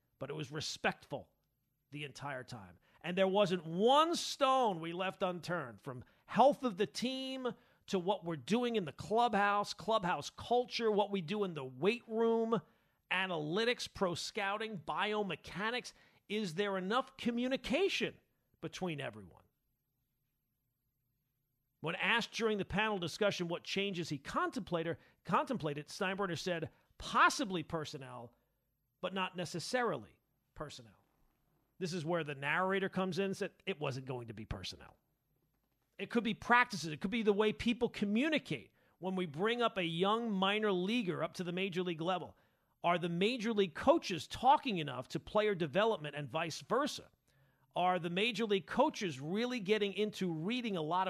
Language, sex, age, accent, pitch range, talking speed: English, male, 40-59, American, 155-220 Hz, 150 wpm